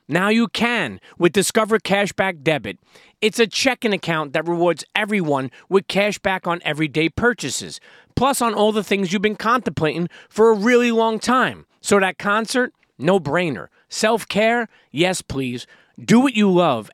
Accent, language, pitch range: American, English, 150-195 Hz